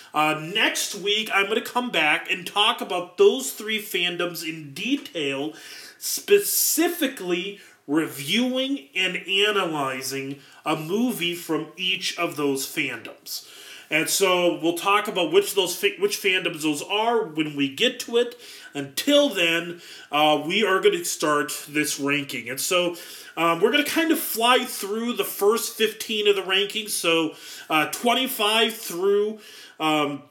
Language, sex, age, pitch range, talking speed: English, male, 30-49, 165-255 Hz, 150 wpm